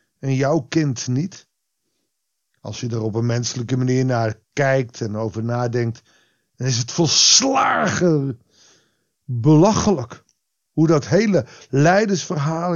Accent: Dutch